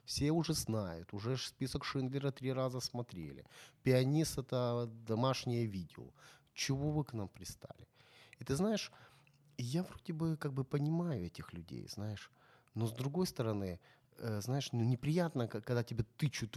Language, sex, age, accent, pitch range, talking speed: Ukrainian, male, 30-49, native, 105-135 Hz, 150 wpm